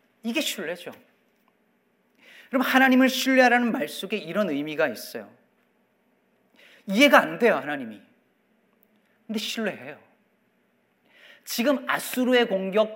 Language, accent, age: Korean, native, 40-59